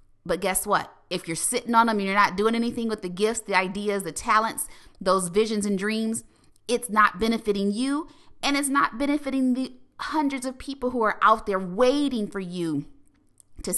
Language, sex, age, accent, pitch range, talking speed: English, female, 30-49, American, 175-240 Hz, 190 wpm